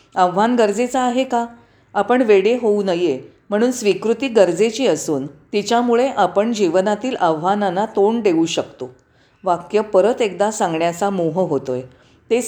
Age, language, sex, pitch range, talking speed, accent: 40-59, Marathi, female, 165-235 Hz, 125 wpm, native